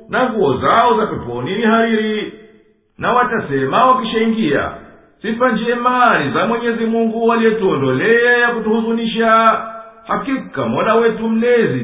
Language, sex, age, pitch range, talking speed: English, male, 50-69, 205-235 Hz, 110 wpm